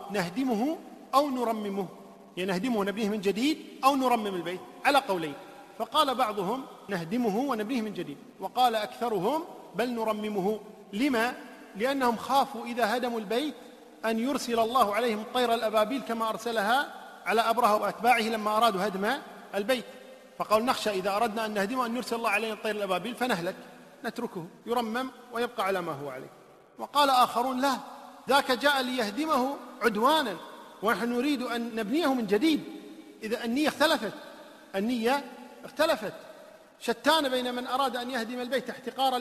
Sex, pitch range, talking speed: male, 215-270 Hz, 140 wpm